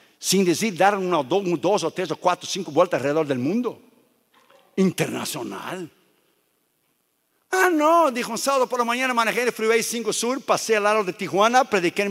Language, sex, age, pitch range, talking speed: Spanish, male, 60-79, 185-245 Hz, 175 wpm